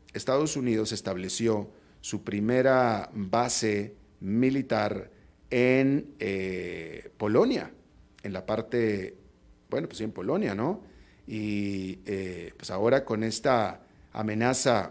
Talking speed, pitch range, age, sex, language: 100 wpm, 100-120 Hz, 40-59, male, Spanish